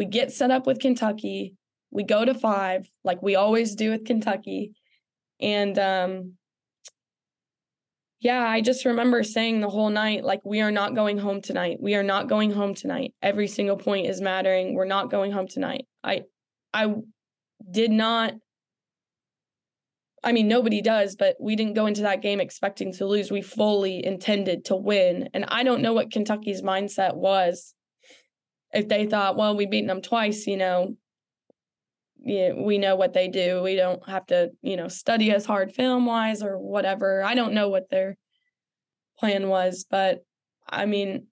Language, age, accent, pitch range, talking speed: English, 10-29, American, 195-235 Hz, 170 wpm